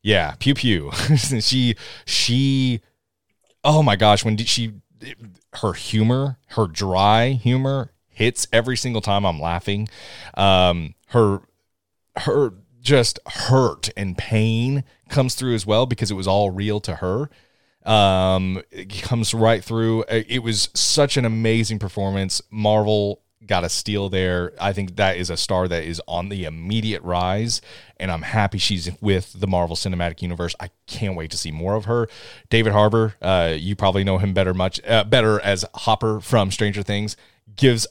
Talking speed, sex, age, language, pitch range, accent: 160 wpm, male, 30-49, English, 90-110 Hz, American